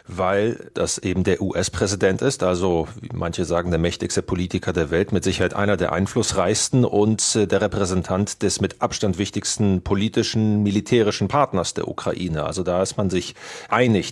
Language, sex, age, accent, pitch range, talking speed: German, male, 30-49, German, 95-115 Hz, 160 wpm